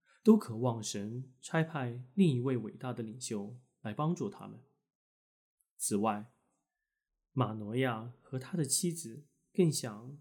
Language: Chinese